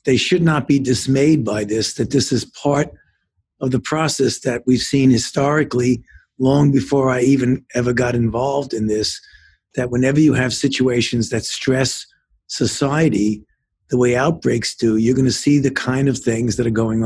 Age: 50-69